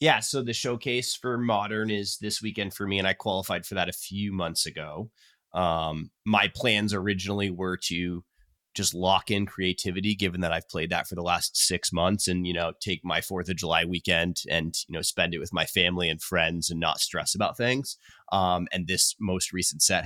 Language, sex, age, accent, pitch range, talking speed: English, male, 20-39, American, 85-105 Hz, 210 wpm